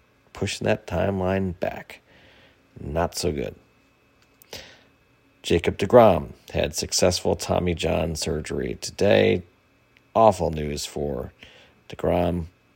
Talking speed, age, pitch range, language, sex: 90 wpm, 40-59, 80-95 Hz, English, male